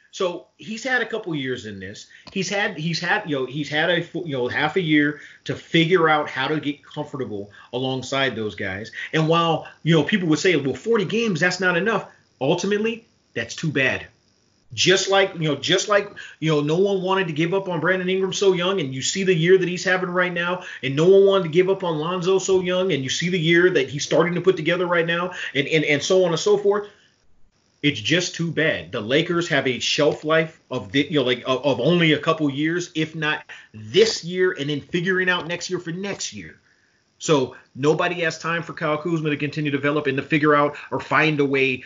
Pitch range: 135-180 Hz